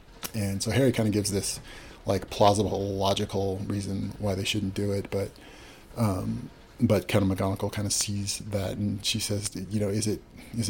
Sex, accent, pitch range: male, American, 100-115 Hz